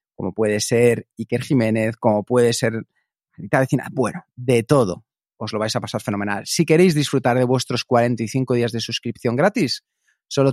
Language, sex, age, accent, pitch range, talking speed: Spanish, male, 30-49, Spanish, 115-150 Hz, 165 wpm